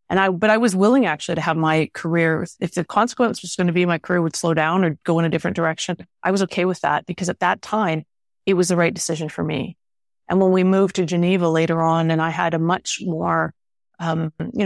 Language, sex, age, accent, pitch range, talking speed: English, female, 30-49, American, 165-190 Hz, 250 wpm